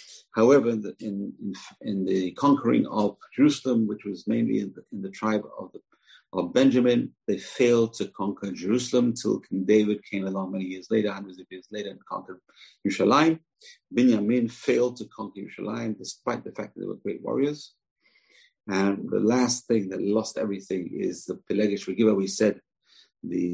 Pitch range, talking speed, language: 100-115 Hz, 170 wpm, English